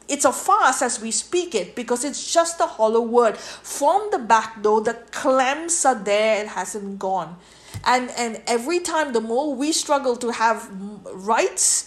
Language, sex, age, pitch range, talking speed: English, female, 50-69, 230-295 Hz, 175 wpm